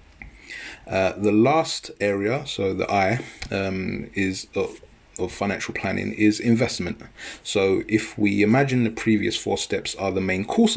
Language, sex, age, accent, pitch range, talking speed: English, male, 30-49, British, 95-115 Hz, 150 wpm